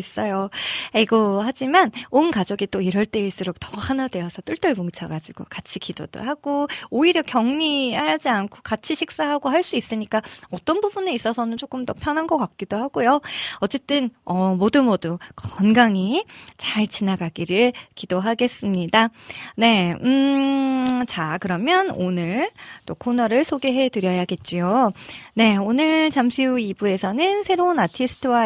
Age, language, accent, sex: 20-39, Korean, native, female